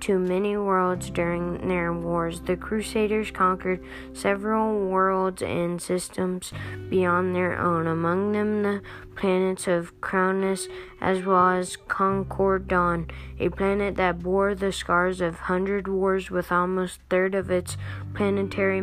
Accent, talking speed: American, 135 wpm